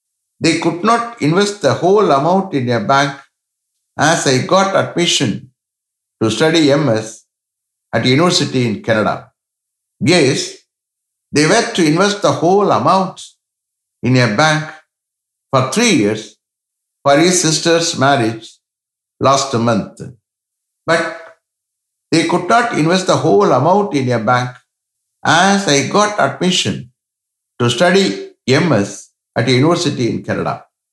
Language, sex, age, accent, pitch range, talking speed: English, male, 60-79, Indian, 115-170 Hz, 120 wpm